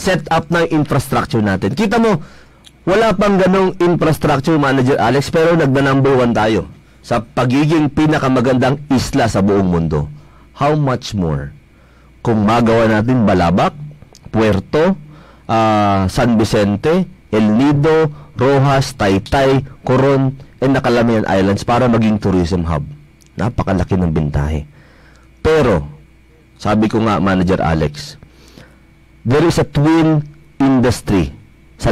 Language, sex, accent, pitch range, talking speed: English, male, Filipino, 100-150 Hz, 115 wpm